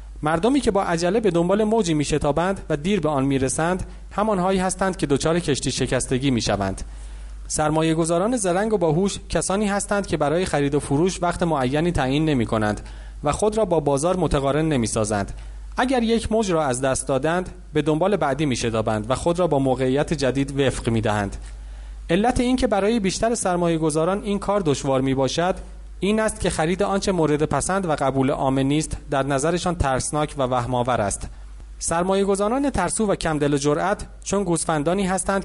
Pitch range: 135-190 Hz